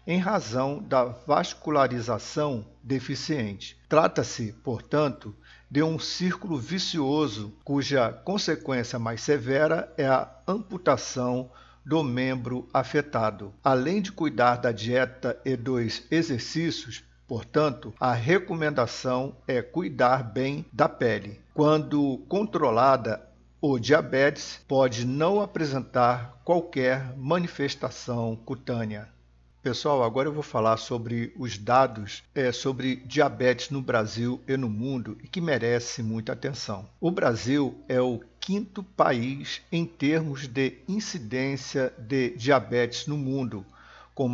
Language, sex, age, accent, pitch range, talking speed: Portuguese, male, 60-79, Brazilian, 120-150 Hz, 110 wpm